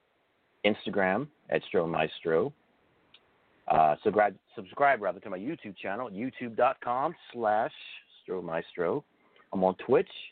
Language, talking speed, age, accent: English, 110 wpm, 50-69, American